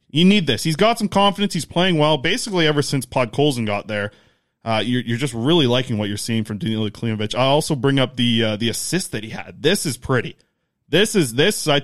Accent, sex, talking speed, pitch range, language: American, male, 240 wpm, 115-150 Hz, English